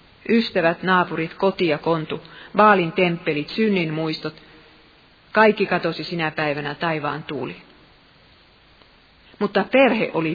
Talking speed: 105 wpm